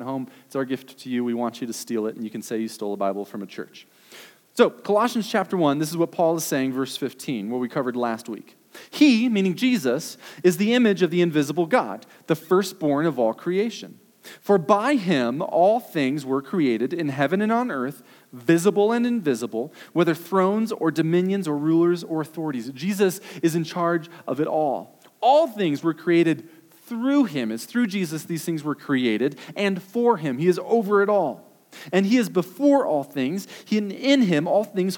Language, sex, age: English, male, 40-59